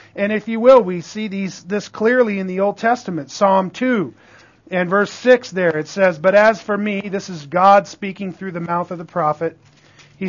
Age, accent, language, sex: 40-59, American, English, male